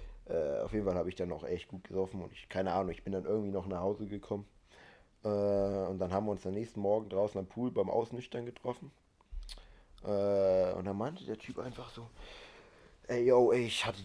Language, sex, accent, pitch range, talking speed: English, male, German, 95-115 Hz, 220 wpm